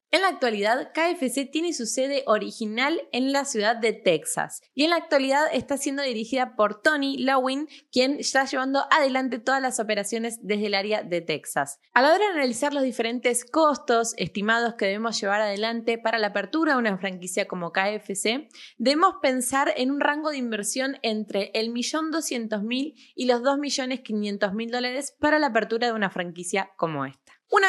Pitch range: 225-290 Hz